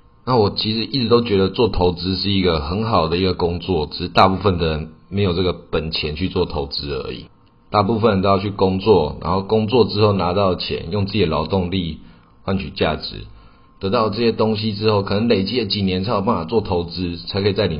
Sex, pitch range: male, 90-105 Hz